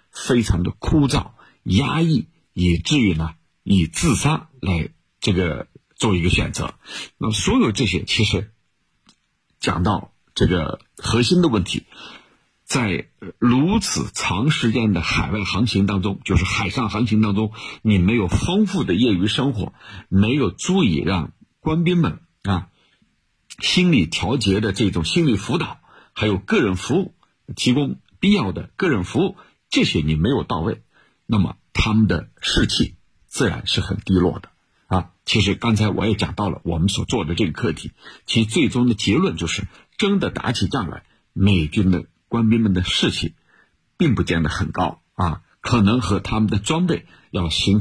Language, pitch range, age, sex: Chinese, 90-125 Hz, 50-69, male